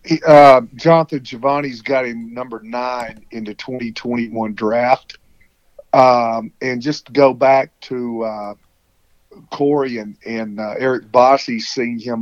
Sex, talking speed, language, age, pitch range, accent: male, 135 wpm, English, 40-59, 110-130 Hz, American